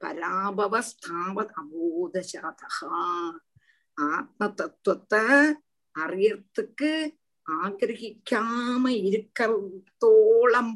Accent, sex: native, female